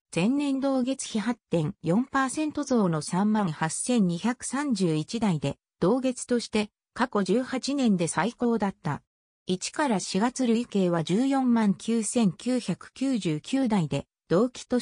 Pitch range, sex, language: 180-260 Hz, female, Japanese